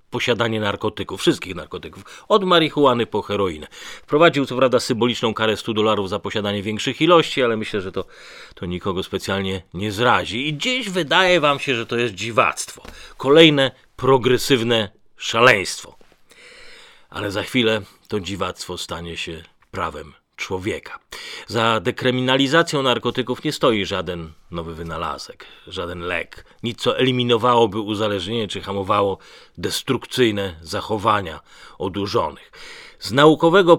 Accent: native